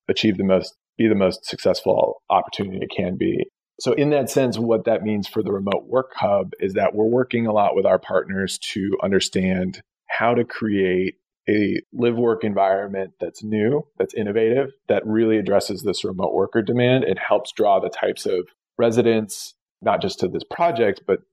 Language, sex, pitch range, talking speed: English, male, 95-120 Hz, 185 wpm